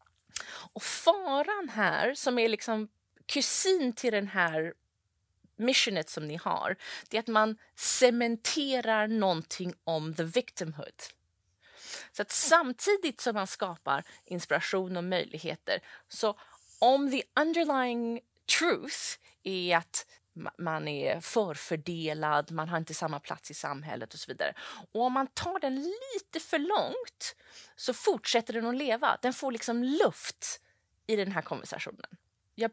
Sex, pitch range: female, 180-265 Hz